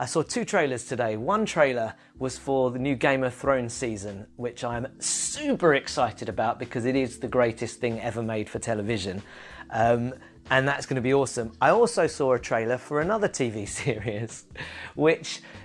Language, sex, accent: English, male, British